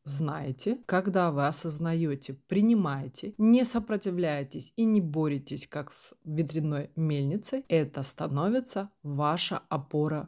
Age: 20-39